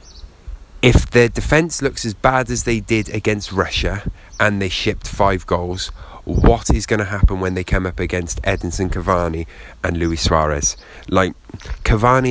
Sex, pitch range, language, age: male, 80-100 Hz, English, 30-49